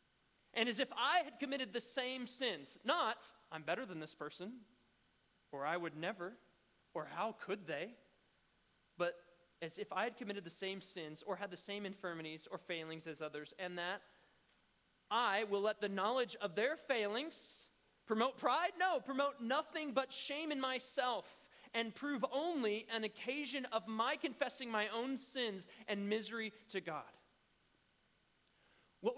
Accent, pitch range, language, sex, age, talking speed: American, 185-260 Hz, English, male, 30-49, 155 wpm